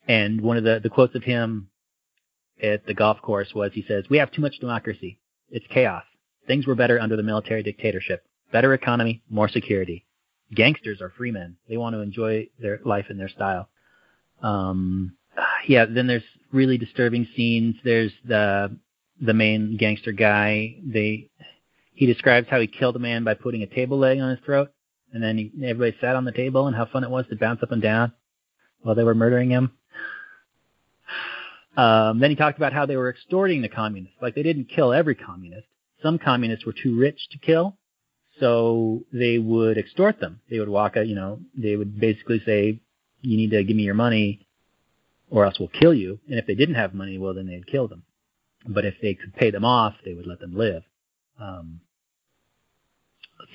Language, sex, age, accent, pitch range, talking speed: English, male, 30-49, American, 105-130 Hz, 195 wpm